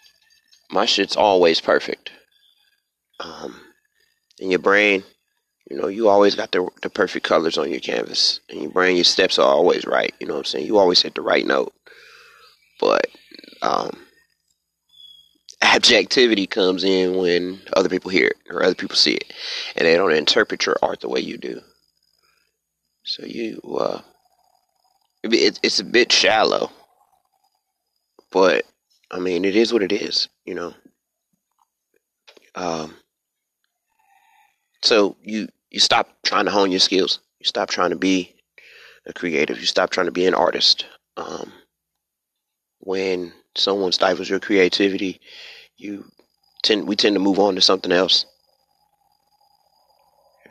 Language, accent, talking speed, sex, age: English, American, 145 wpm, male, 30-49